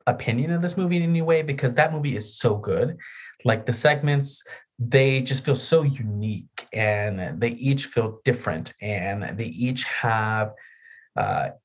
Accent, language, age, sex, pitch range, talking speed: American, English, 30-49, male, 110-145 Hz, 160 wpm